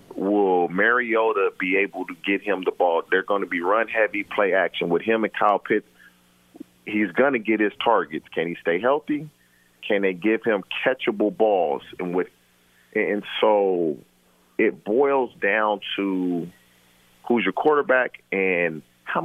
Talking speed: 155 wpm